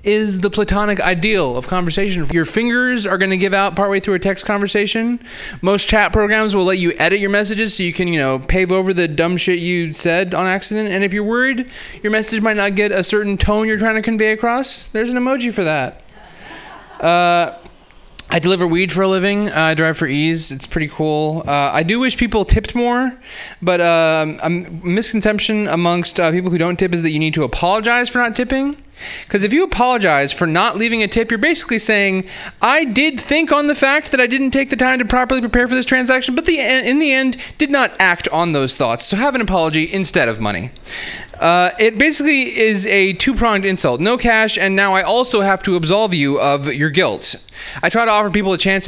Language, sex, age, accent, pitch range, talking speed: English, male, 20-39, American, 175-230 Hz, 220 wpm